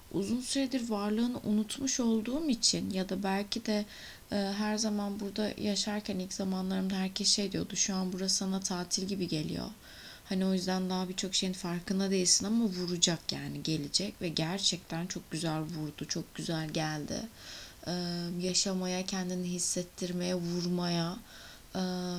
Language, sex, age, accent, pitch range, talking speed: Turkish, female, 20-39, native, 180-205 Hz, 145 wpm